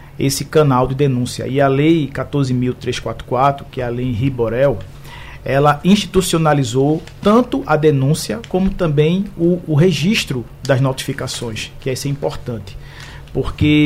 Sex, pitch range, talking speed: male, 130-150 Hz, 135 wpm